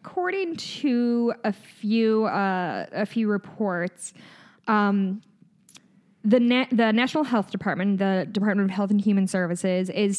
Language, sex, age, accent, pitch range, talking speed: English, female, 10-29, American, 190-220 Hz, 135 wpm